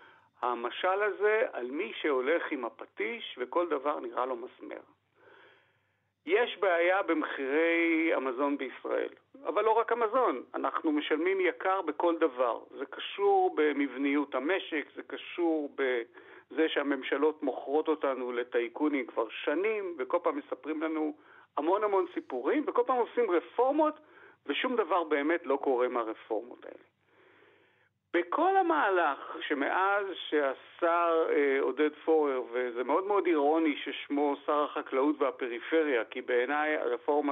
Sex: male